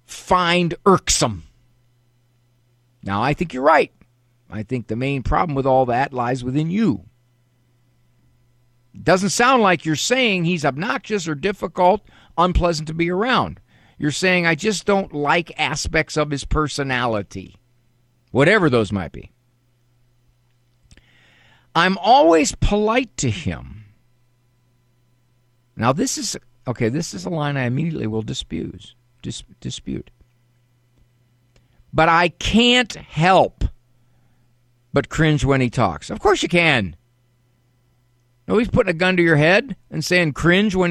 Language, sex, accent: English, male, American